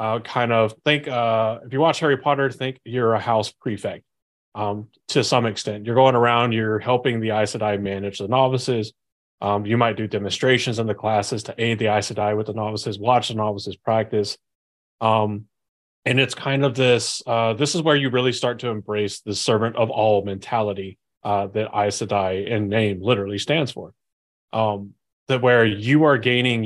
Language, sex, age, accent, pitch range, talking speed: English, male, 30-49, American, 105-120 Hz, 190 wpm